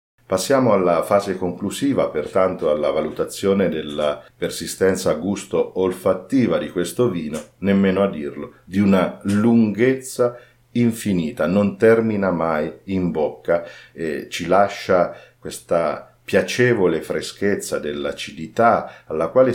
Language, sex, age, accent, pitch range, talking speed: Italian, male, 50-69, native, 85-110 Hz, 105 wpm